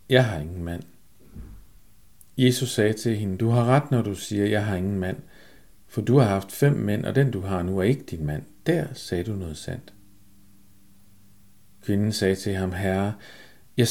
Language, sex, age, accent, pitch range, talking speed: Danish, male, 50-69, native, 90-120 Hz, 190 wpm